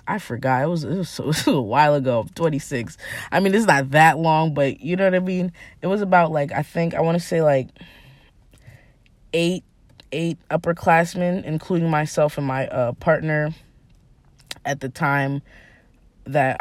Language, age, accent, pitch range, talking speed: English, 20-39, American, 135-165 Hz, 170 wpm